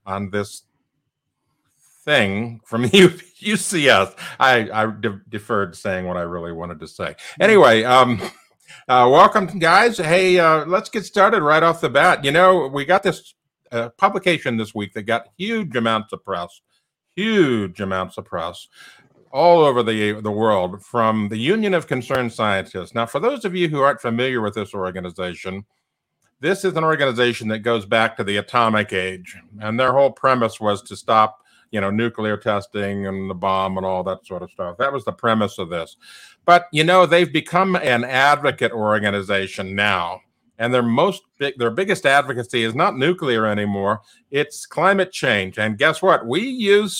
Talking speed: 170 wpm